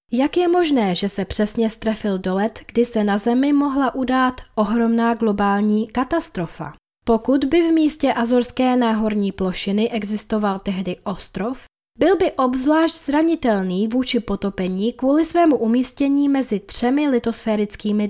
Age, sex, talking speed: 20-39, female, 135 wpm